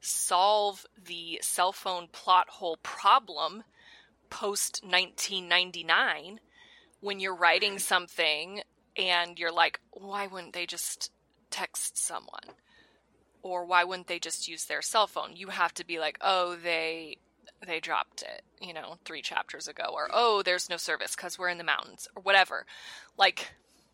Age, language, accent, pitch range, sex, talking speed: 20-39, English, American, 175-220 Hz, female, 150 wpm